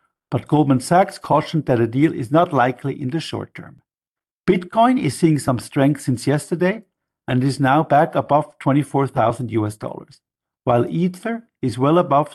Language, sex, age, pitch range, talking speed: English, male, 50-69, 130-180 Hz, 165 wpm